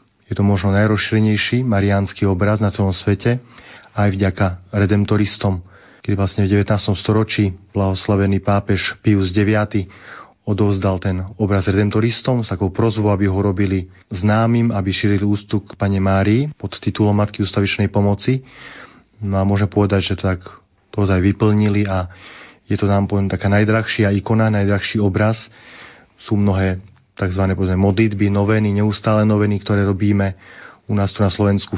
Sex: male